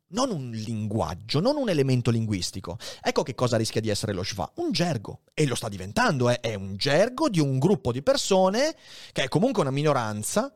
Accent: native